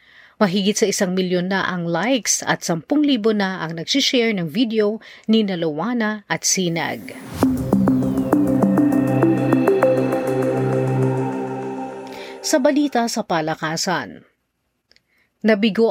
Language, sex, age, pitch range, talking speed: Filipino, female, 40-59, 170-230 Hz, 90 wpm